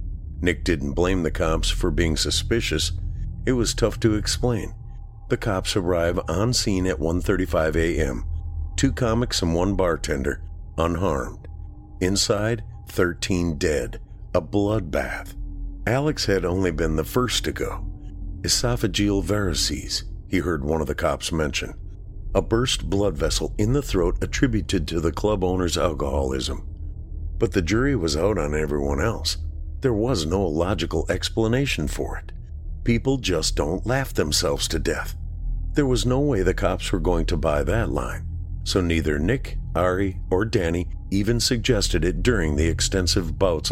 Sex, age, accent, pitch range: male, 50-69, American, 80-105 Hz